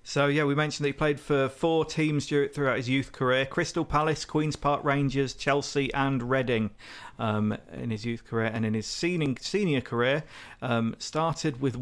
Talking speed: 180 wpm